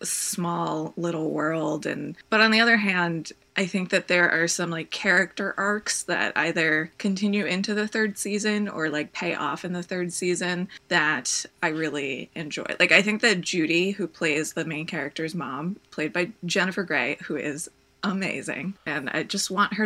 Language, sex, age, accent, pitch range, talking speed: English, female, 20-39, American, 160-195 Hz, 180 wpm